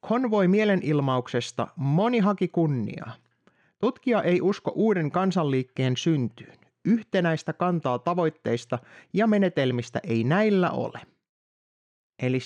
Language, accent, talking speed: Finnish, native, 95 wpm